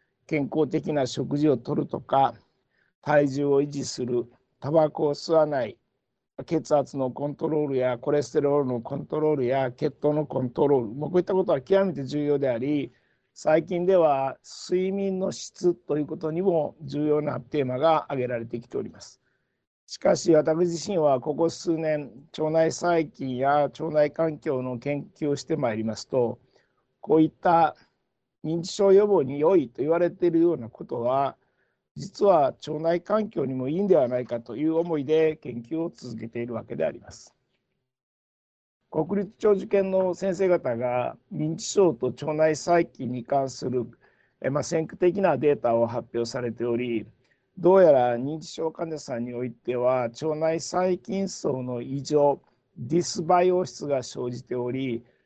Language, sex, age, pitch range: Japanese, male, 60-79, 125-165 Hz